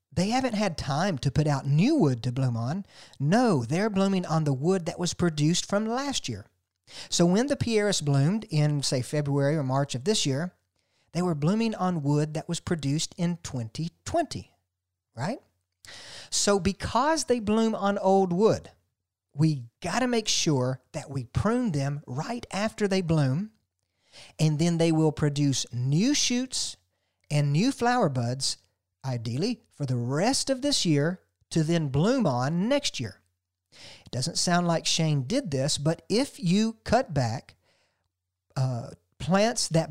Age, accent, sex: 50-69, American, male